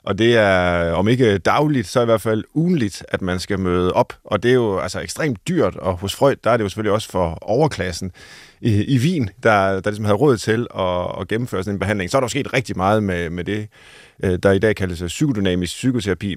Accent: native